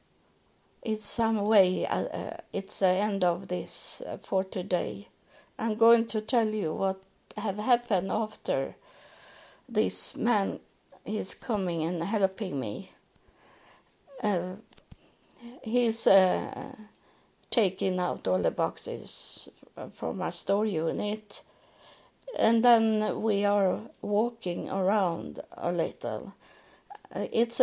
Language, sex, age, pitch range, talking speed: English, female, 60-79, 190-225 Hz, 105 wpm